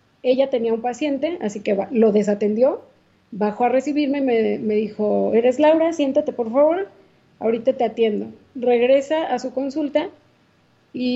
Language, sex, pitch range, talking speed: Spanish, female, 220-265 Hz, 150 wpm